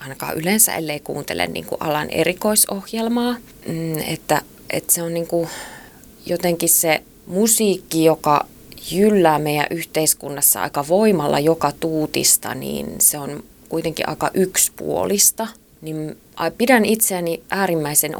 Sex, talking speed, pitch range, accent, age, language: female, 110 wpm, 145-180 Hz, native, 20-39, Finnish